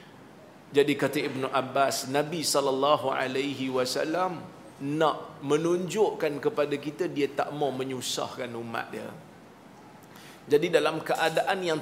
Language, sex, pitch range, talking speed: Malayalam, male, 140-200 Hz, 110 wpm